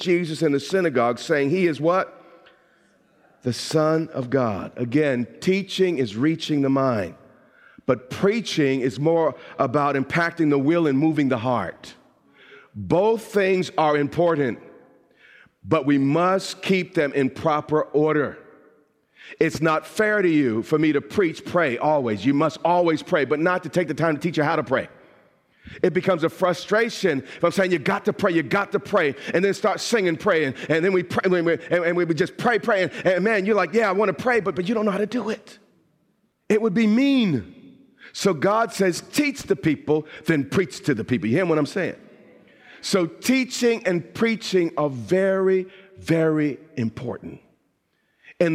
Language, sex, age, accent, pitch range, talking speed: English, male, 40-59, American, 145-195 Hz, 180 wpm